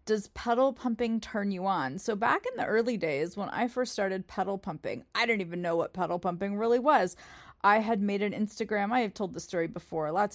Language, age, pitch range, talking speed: English, 30-49, 180-235 Hz, 225 wpm